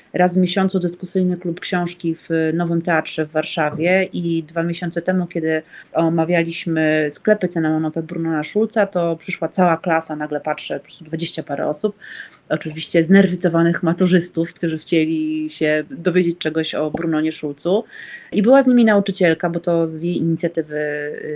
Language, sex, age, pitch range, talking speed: Polish, female, 30-49, 160-195 Hz, 150 wpm